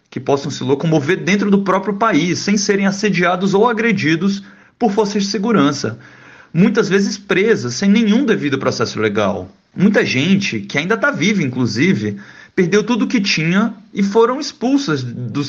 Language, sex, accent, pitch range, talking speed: Portuguese, male, Brazilian, 125-205 Hz, 155 wpm